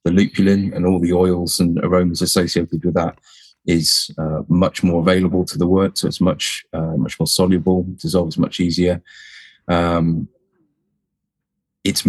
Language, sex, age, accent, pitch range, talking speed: English, male, 20-39, British, 85-95 Hz, 155 wpm